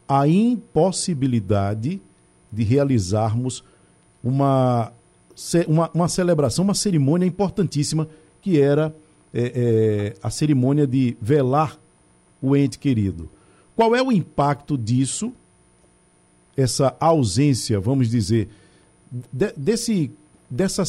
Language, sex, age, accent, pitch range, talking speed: Portuguese, male, 50-69, Brazilian, 115-165 Hz, 85 wpm